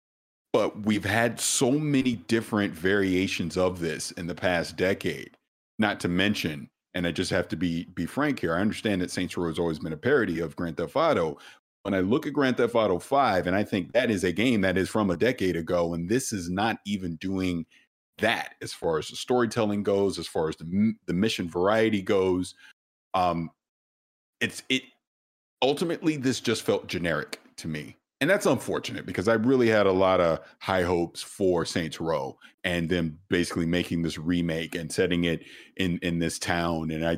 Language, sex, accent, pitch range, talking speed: English, male, American, 85-100 Hz, 195 wpm